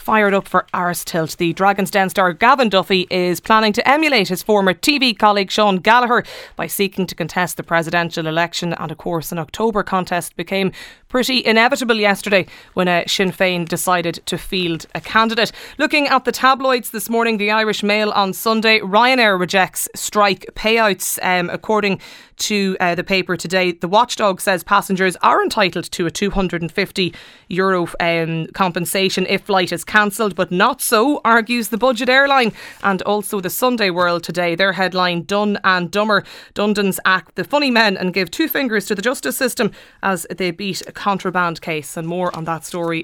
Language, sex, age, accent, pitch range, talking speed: English, female, 20-39, Irish, 175-220 Hz, 175 wpm